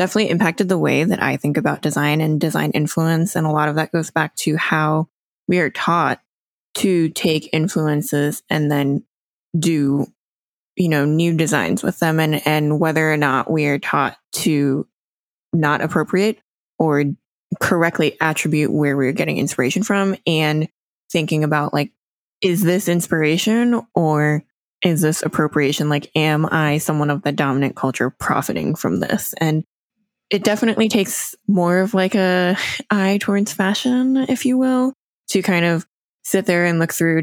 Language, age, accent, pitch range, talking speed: English, 20-39, American, 155-200 Hz, 160 wpm